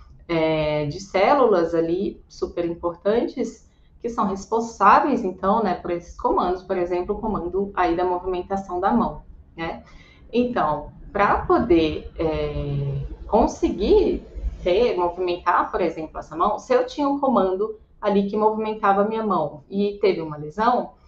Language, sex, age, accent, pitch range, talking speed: Portuguese, female, 20-39, Brazilian, 180-235 Hz, 140 wpm